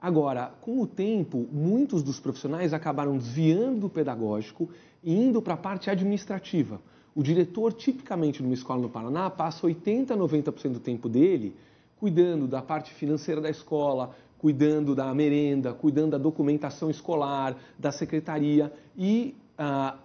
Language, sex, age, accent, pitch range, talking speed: Portuguese, male, 40-59, Brazilian, 140-200 Hz, 140 wpm